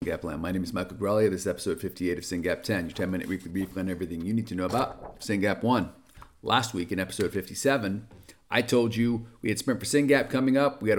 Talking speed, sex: 240 wpm, male